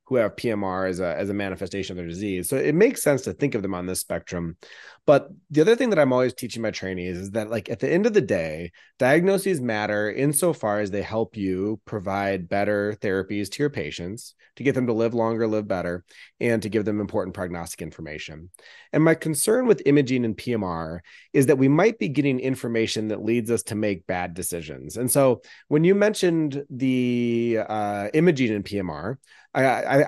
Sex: male